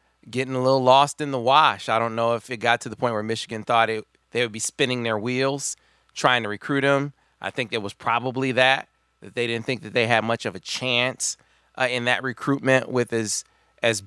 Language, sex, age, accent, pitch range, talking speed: English, male, 30-49, American, 115-140 Hz, 230 wpm